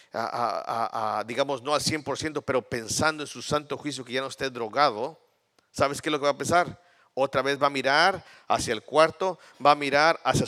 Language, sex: Spanish, male